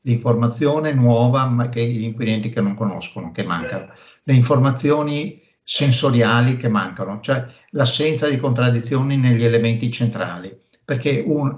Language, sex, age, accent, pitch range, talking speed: Italian, male, 60-79, native, 115-140 Hz, 120 wpm